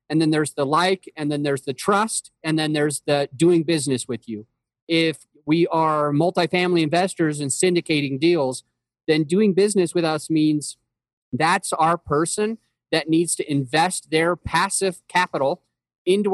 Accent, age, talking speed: American, 30-49, 160 wpm